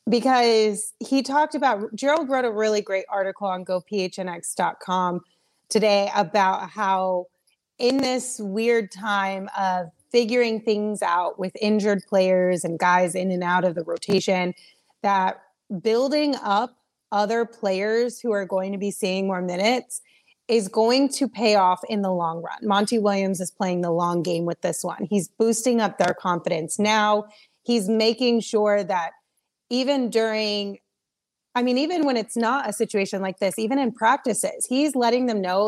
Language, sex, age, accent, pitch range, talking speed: English, female, 30-49, American, 185-225 Hz, 160 wpm